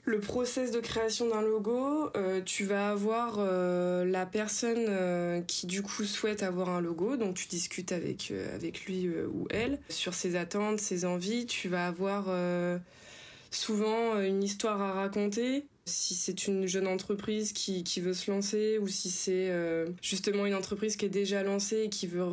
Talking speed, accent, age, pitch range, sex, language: 165 wpm, French, 20-39, 175-205 Hz, female, French